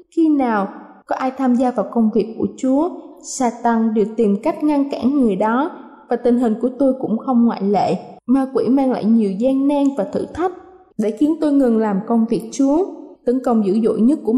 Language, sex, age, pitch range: Thai, female, 20-39, 225-285 Hz